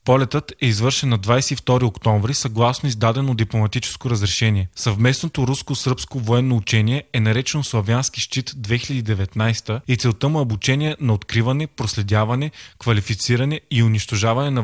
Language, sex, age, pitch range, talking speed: Bulgarian, male, 20-39, 110-130 Hz, 125 wpm